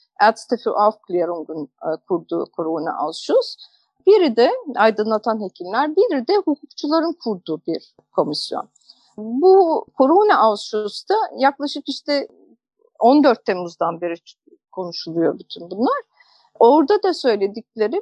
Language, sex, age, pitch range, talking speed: Turkish, female, 50-69, 215-285 Hz, 100 wpm